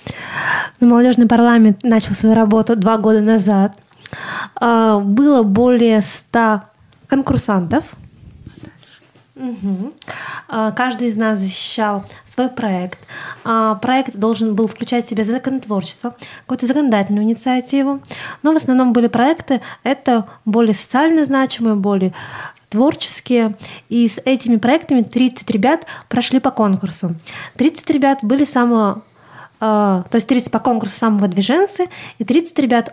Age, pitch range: 20-39, 210-260 Hz